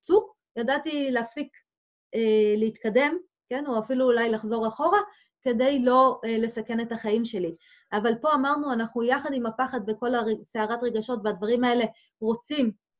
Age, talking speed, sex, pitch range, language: 30-49, 145 wpm, female, 225-315 Hz, Hebrew